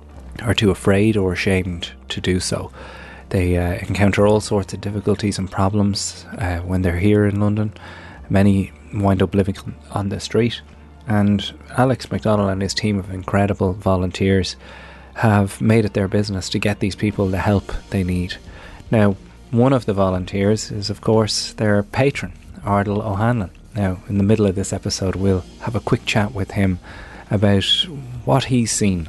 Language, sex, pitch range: English, male, 90-105 Hz